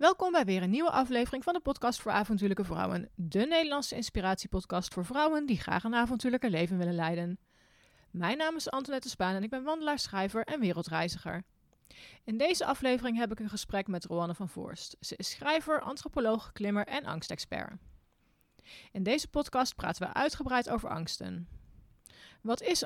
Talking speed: 170 wpm